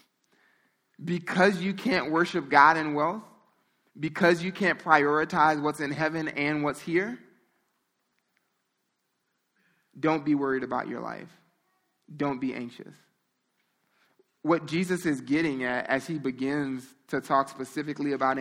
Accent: American